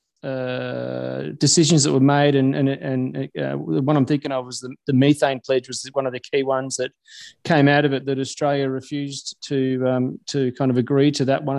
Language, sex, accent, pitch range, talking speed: English, male, Australian, 130-150 Hz, 225 wpm